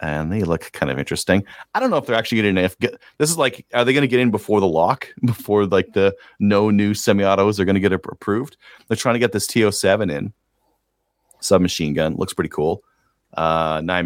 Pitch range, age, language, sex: 85-110 Hz, 30-49, English, male